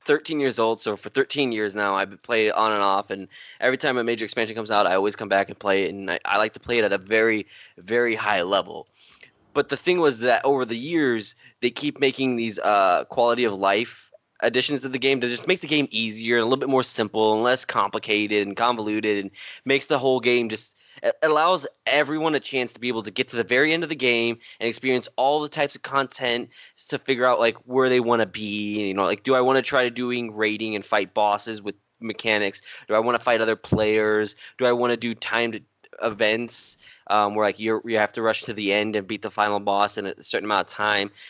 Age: 20-39